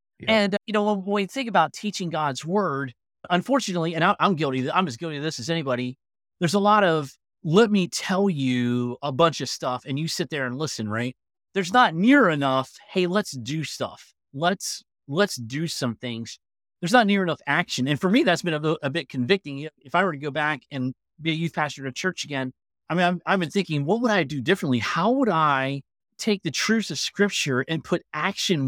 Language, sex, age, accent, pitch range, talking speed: English, male, 30-49, American, 140-200 Hz, 220 wpm